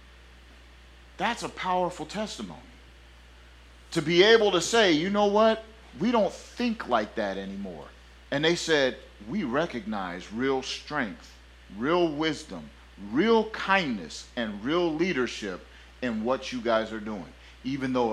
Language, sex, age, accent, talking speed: English, male, 40-59, American, 130 wpm